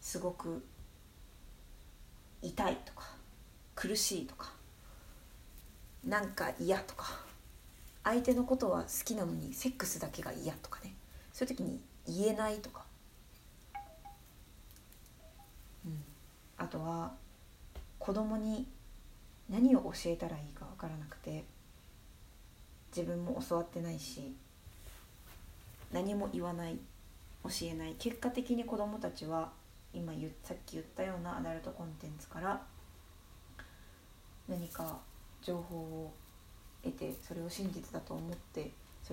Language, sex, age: Japanese, female, 40-59